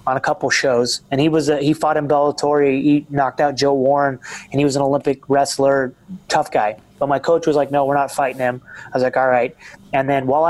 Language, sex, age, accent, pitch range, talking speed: English, male, 30-49, American, 125-150 Hz, 245 wpm